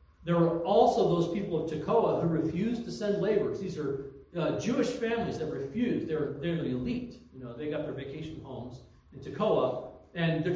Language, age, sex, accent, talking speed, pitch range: English, 40-59, male, American, 195 wpm, 155-210 Hz